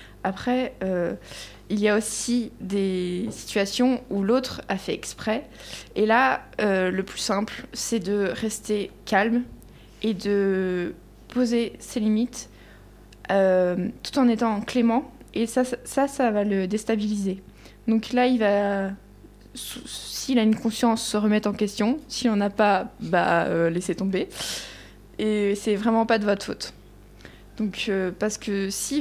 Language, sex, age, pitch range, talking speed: French, female, 20-39, 195-240 Hz, 150 wpm